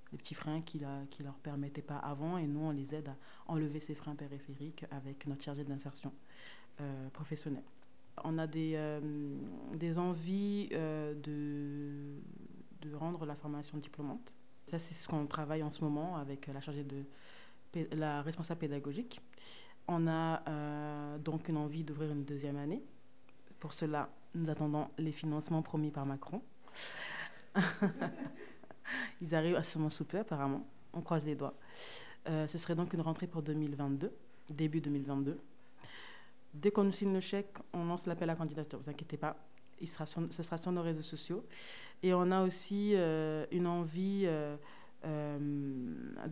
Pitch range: 145-165 Hz